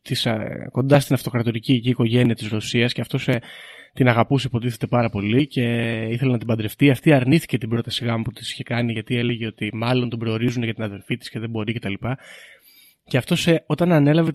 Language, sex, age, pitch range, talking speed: Greek, male, 20-39, 115-145 Hz, 210 wpm